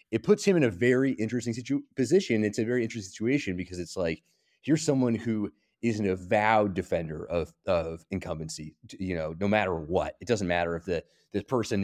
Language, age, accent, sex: English, 30-49, American, male